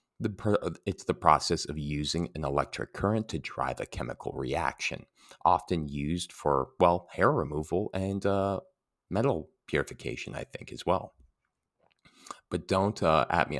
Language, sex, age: English, male, 30-49